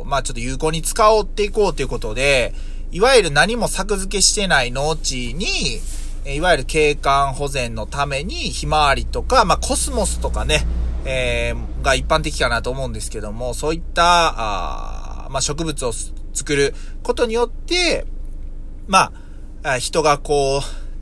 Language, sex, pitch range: Japanese, male, 125-195 Hz